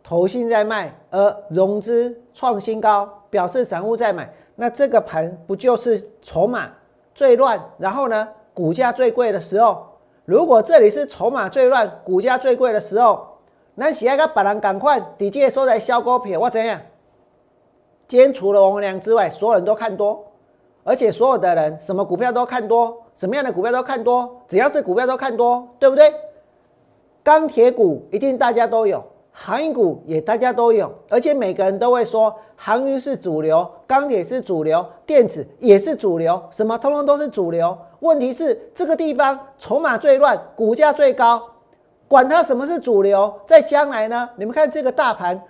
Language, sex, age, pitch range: Chinese, male, 40-59, 205-285 Hz